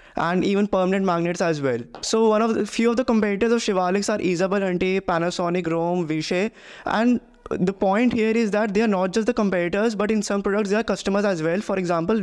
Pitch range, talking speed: 180-215 Hz, 220 wpm